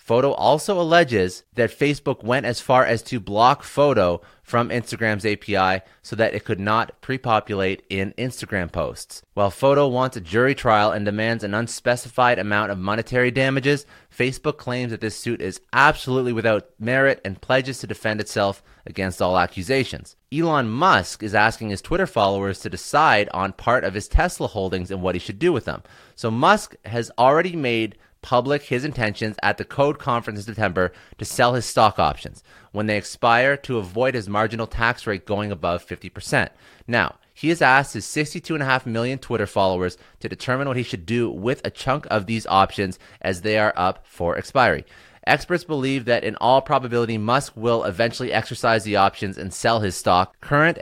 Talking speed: 180 wpm